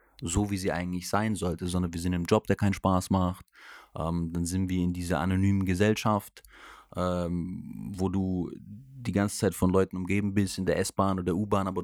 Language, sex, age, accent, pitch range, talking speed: German, male, 30-49, German, 90-110 Hz, 205 wpm